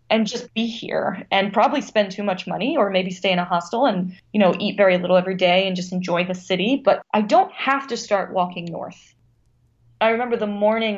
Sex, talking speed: female, 225 wpm